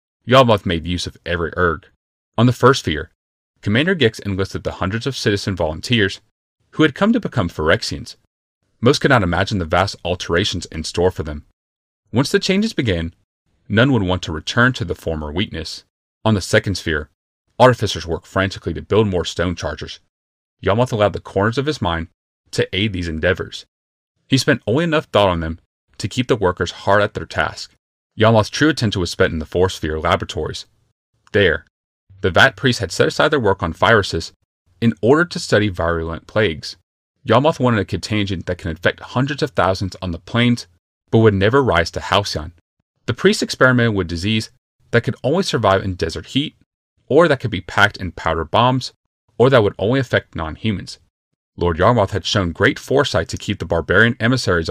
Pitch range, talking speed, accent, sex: 85-115 Hz, 185 wpm, American, male